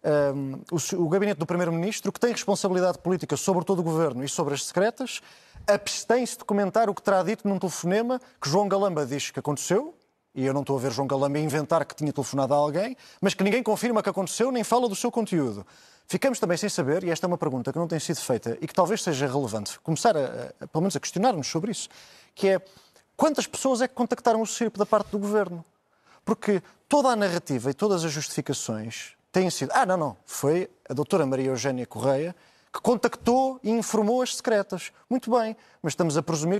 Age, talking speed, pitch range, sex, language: 20-39, 210 wpm, 155-210 Hz, male, Portuguese